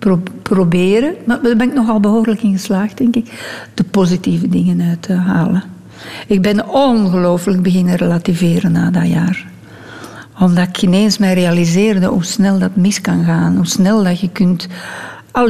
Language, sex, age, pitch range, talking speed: Dutch, female, 60-79, 175-220 Hz, 165 wpm